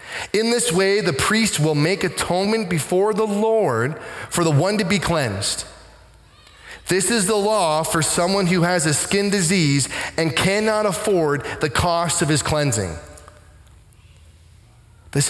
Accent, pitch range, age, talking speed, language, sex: American, 110-170 Hz, 30-49, 145 wpm, English, male